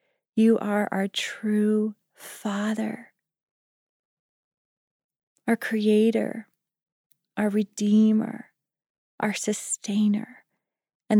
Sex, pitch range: female, 185-215 Hz